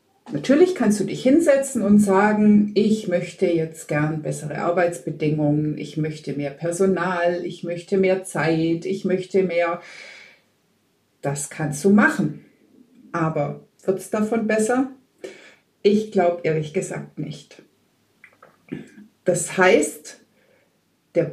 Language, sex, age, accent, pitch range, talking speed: German, female, 50-69, German, 165-220 Hz, 115 wpm